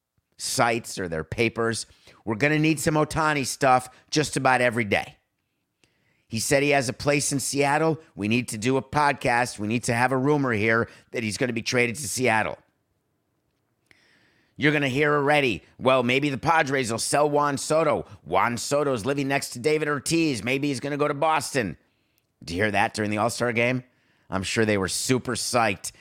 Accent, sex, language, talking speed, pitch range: American, male, English, 195 wpm, 110-145 Hz